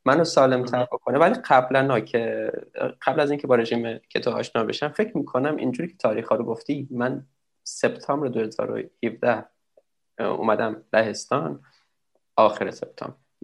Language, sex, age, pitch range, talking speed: Persian, male, 20-39, 125-150 Hz, 135 wpm